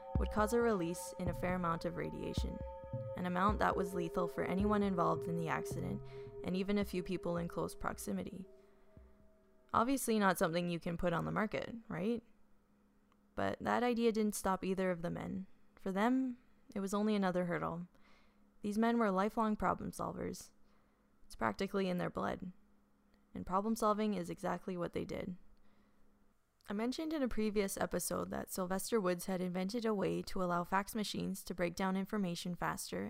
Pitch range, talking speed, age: 175-210 Hz, 175 wpm, 10-29